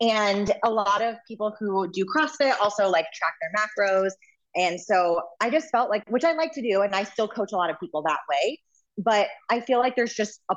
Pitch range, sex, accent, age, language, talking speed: 170-230 Hz, female, American, 20-39, English, 235 wpm